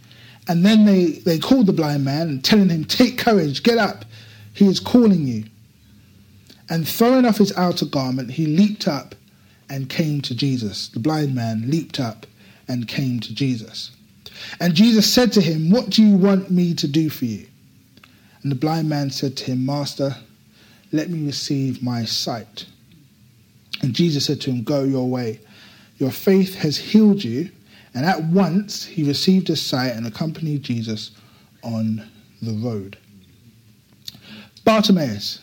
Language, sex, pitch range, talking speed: English, male, 120-170 Hz, 160 wpm